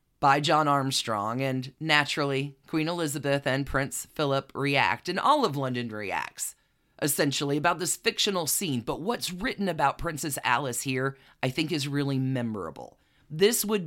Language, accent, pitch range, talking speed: English, American, 130-170 Hz, 150 wpm